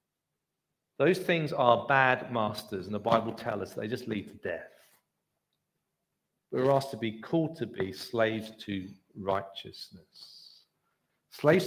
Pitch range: 135-205 Hz